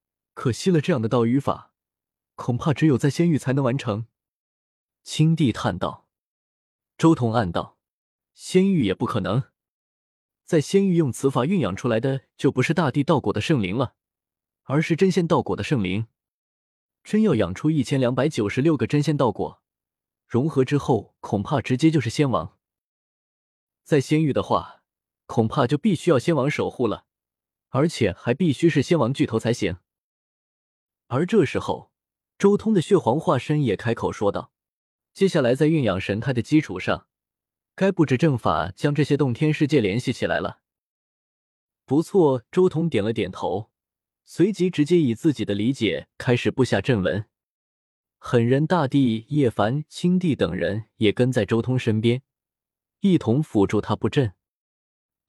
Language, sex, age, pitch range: Chinese, male, 20-39, 115-160 Hz